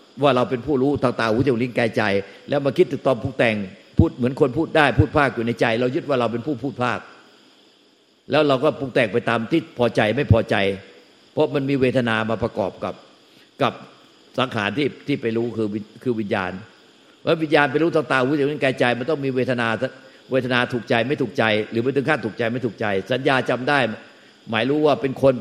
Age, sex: 60-79, male